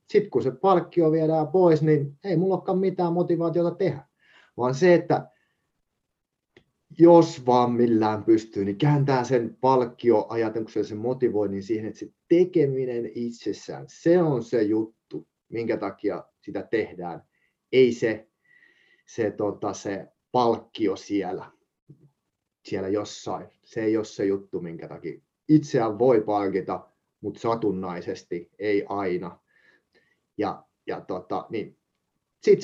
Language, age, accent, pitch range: Finnish, 30-49, native, 105-155 Hz